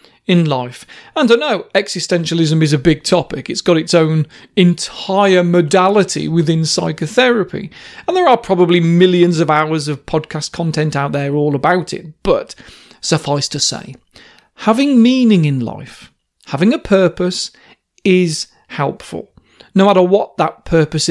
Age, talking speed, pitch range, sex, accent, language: 40-59, 150 wpm, 155-205 Hz, male, British, English